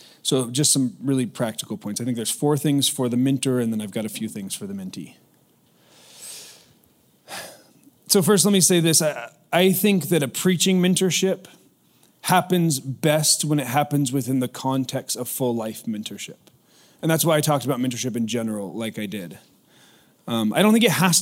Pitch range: 125-165 Hz